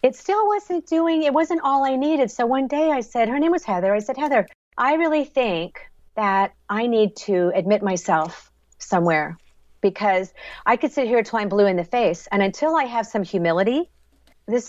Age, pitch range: 50-69, 180-240 Hz